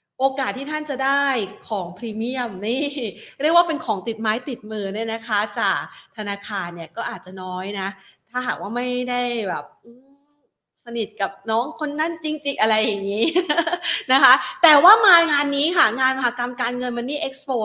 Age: 30-49